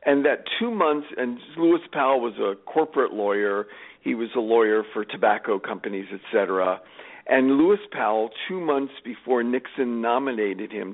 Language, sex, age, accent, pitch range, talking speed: English, male, 50-69, American, 115-150 Hz, 155 wpm